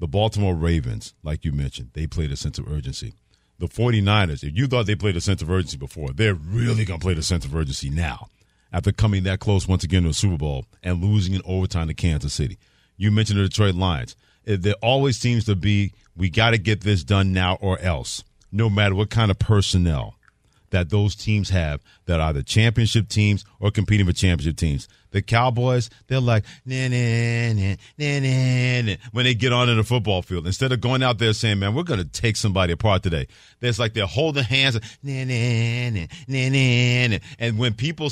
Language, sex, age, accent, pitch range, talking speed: English, male, 40-59, American, 85-110 Hz, 215 wpm